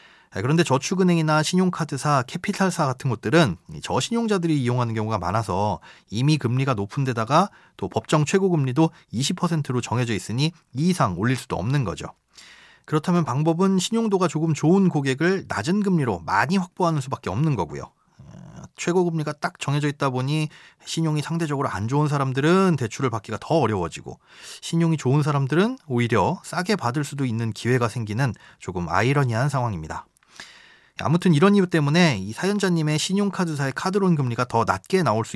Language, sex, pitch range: Korean, male, 120-170 Hz